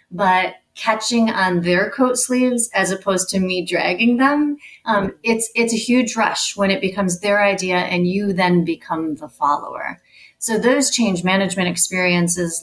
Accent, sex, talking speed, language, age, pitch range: American, female, 160 wpm, English, 30-49, 185-230 Hz